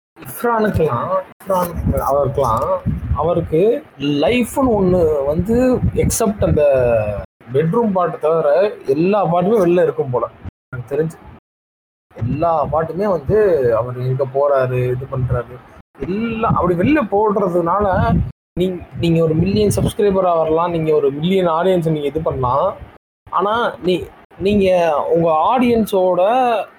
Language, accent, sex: Tamil, native, male